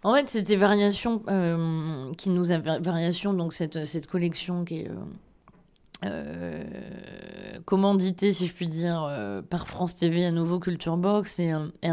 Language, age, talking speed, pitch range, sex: French, 20-39, 160 wpm, 165-190 Hz, female